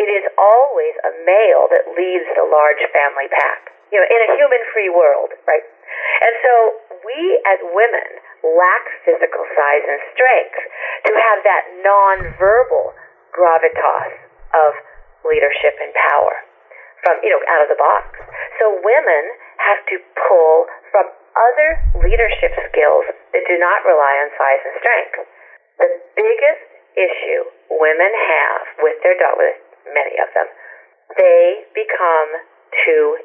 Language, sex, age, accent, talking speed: English, female, 40-59, American, 135 wpm